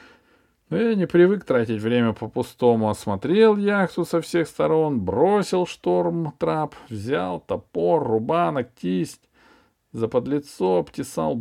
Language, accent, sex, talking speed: Russian, native, male, 110 wpm